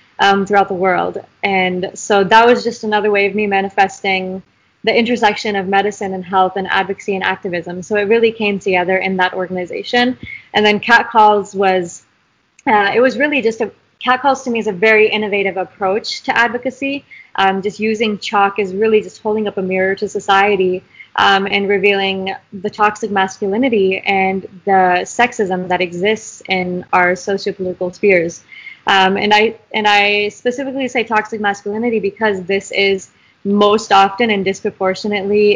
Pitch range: 190-220 Hz